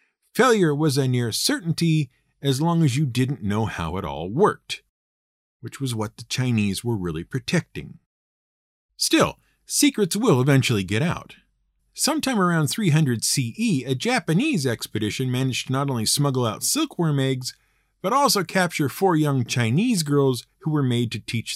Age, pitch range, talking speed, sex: 50-69, 115-170 Hz, 155 wpm, male